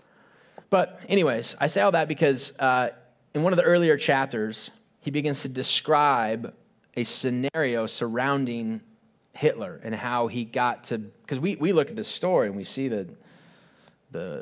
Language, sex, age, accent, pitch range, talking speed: English, male, 30-49, American, 115-145 Hz, 160 wpm